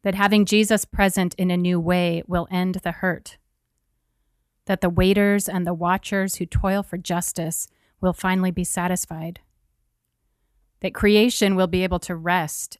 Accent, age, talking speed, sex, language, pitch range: American, 30-49, 155 wpm, female, English, 150-185 Hz